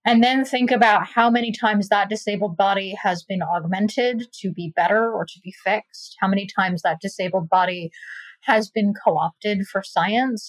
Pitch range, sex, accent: 185-225 Hz, female, American